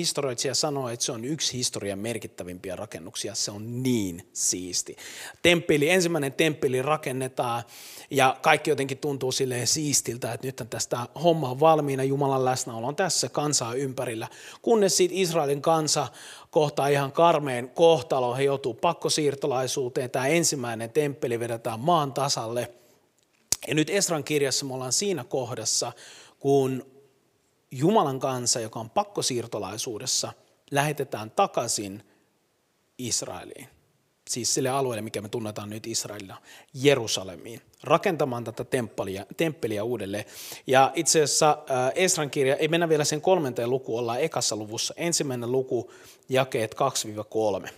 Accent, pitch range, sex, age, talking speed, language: native, 120-155 Hz, male, 30-49, 125 wpm, Finnish